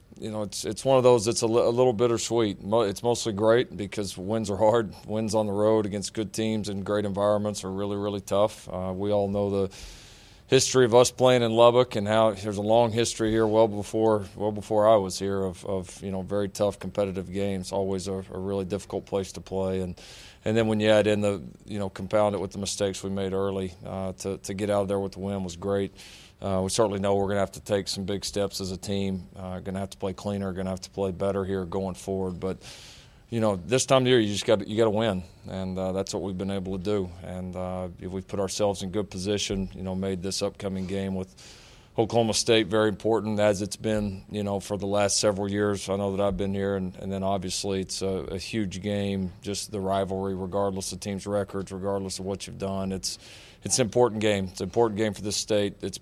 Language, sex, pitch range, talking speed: English, male, 95-105 Hz, 245 wpm